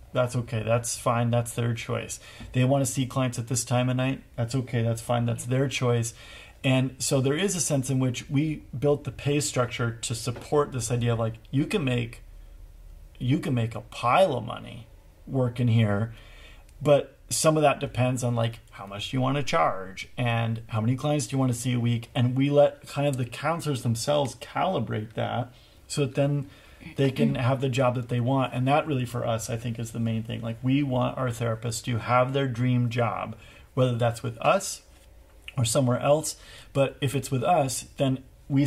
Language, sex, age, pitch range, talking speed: English, male, 40-59, 115-135 Hz, 210 wpm